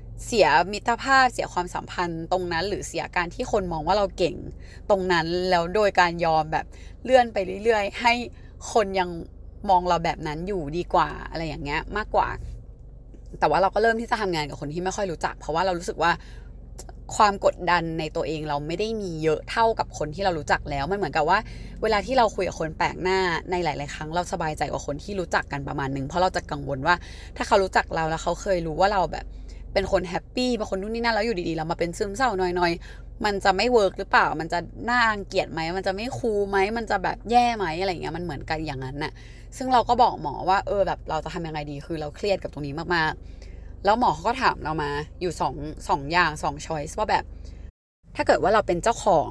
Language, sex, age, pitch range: Thai, female, 20-39, 155-205 Hz